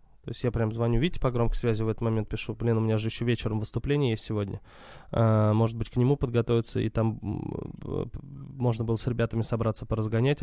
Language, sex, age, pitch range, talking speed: Russian, male, 20-39, 115-130 Hz, 200 wpm